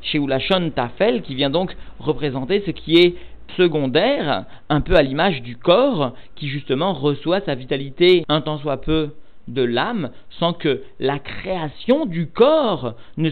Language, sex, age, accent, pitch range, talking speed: French, male, 50-69, French, 130-175 Hz, 155 wpm